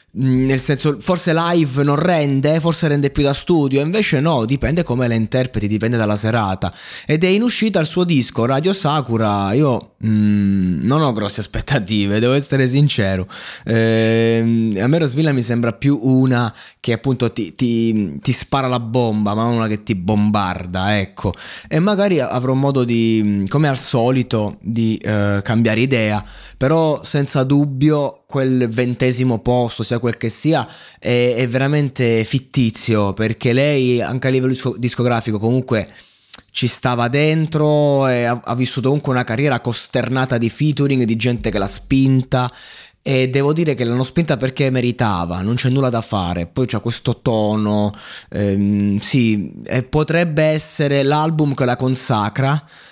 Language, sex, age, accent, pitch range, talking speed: Italian, male, 20-39, native, 110-140 Hz, 155 wpm